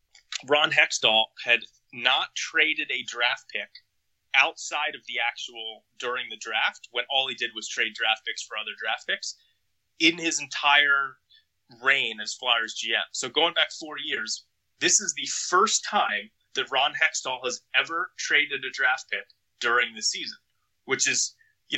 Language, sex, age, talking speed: English, male, 20-39, 165 wpm